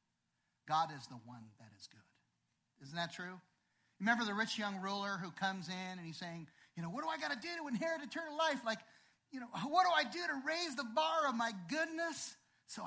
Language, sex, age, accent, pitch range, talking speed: English, male, 40-59, American, 165-250 Hz, 225 wpm